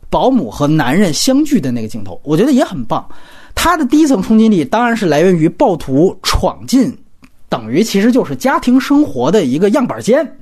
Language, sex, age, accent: Chinese, male, 30-49, native